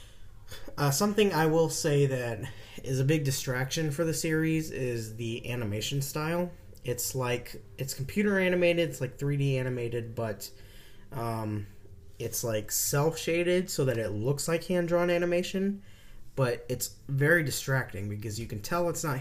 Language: English